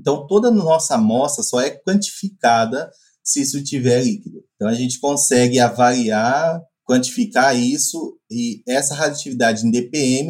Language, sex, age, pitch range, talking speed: Portuguese, male, 20-39, 130-215 Hz, 140 wpm